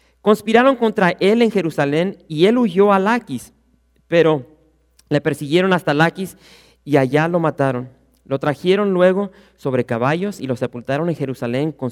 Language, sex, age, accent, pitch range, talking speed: English, male, 40-59, Mexican, 125-170 Hz, 150 wpm